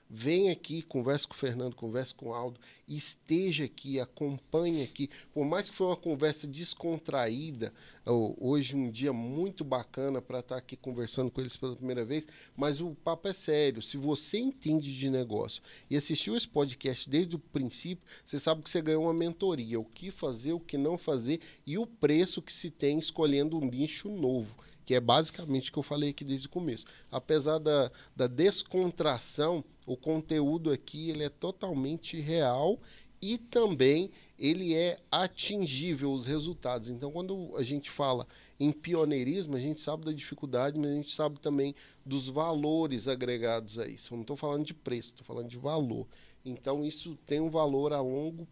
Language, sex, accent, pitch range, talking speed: Portuguese, male, Brazilian, 130-160 Hz, 175 wpm